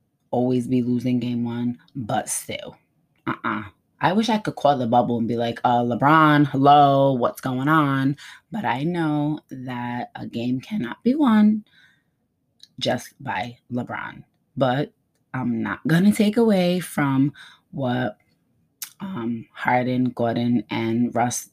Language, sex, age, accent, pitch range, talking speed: English, female, 20-39, American, 120-155 Hz, 140 wpm